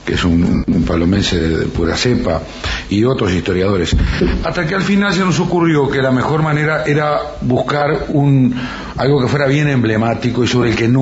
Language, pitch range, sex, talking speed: Spanish, 95-125 Hz, male, 200 wpm